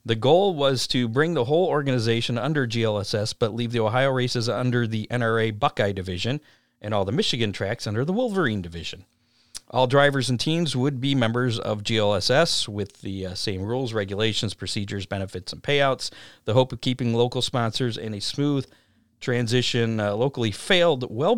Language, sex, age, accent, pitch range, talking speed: English, male, 50-69, American, 110-135 Hz, 175 wpm